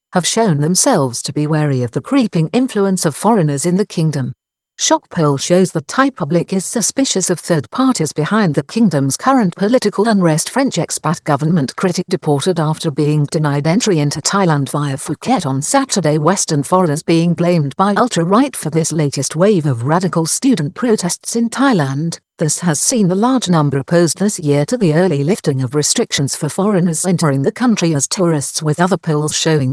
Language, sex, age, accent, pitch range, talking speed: English, female, 60-79, British, 150-195 Hz, 180 wpm